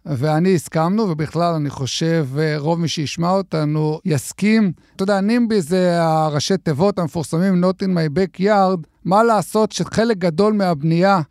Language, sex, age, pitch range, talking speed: Hebrew, male, 50-69, 160-195 Hz, 140 wpm